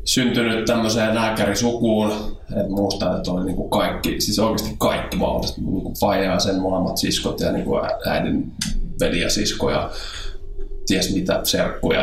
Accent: native